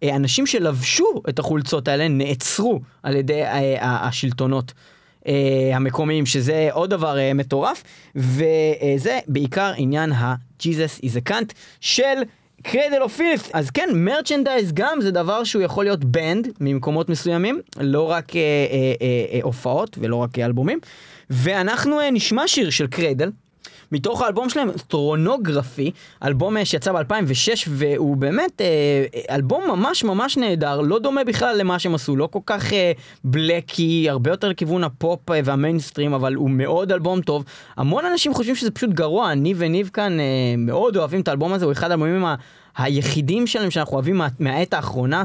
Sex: male